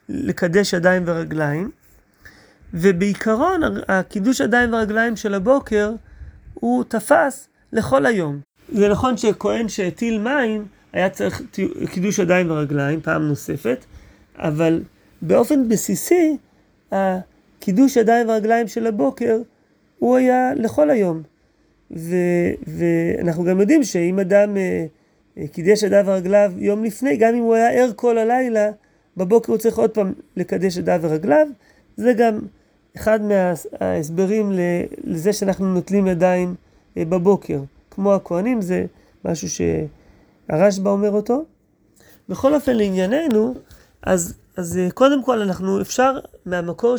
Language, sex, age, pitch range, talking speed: Hebrew, male, 30-49, 180-230 Hz, 115 wpm